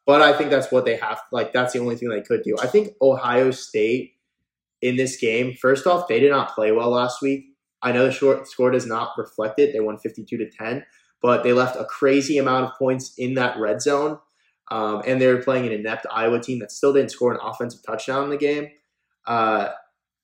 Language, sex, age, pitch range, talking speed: English, male, 20-39, 120-135 Hz, 230 wpm